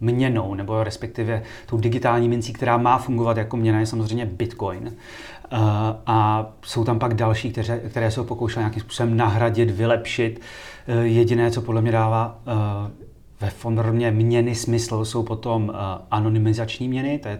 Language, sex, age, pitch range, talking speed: Czech, male, 30-49, 110-130 Hz, 145 wpm